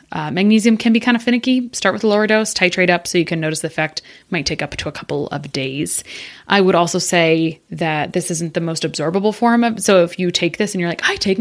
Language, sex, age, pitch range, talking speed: English, female, 20-39, 160-205 Hz, 265 wpm